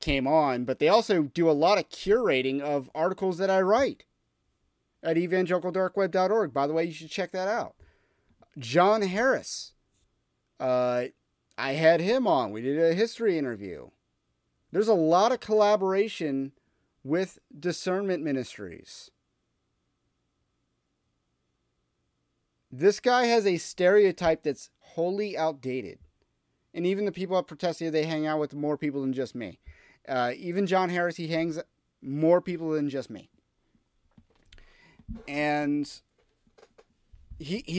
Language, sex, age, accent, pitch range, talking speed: English, male, 30-49, American, 135-190 Hz, 130 wpm